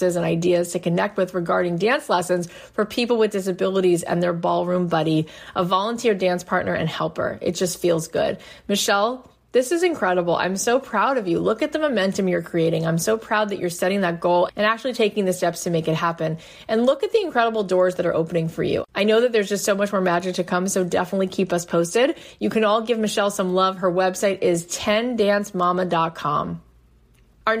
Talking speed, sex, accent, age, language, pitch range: 210 wpm, female, American, 20-39, English, 180-225 Hz